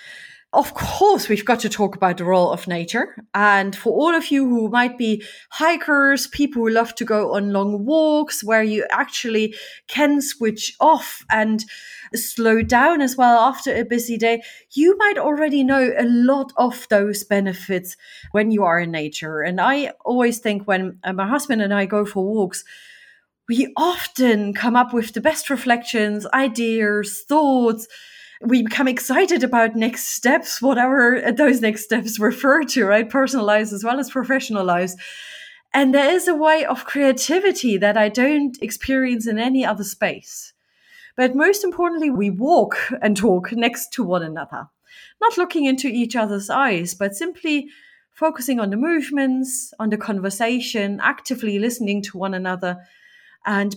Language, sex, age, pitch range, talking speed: English, female, 30-49, 210-275 Hz, 165 wpm